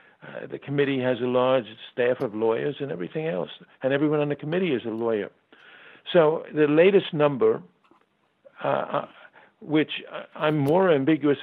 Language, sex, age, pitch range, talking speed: Danish, male, 60-79, 115-145 Hz, 150 wpm